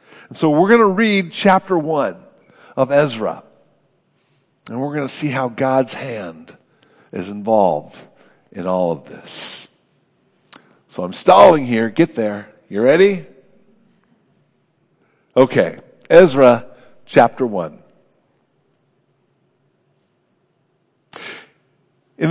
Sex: male